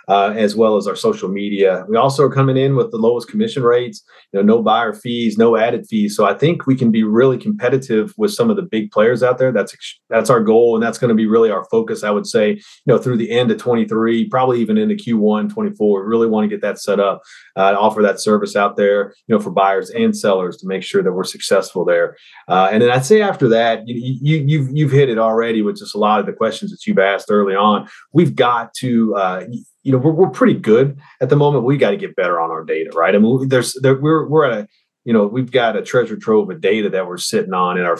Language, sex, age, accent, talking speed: English, male, 30-49, American, 265 wpm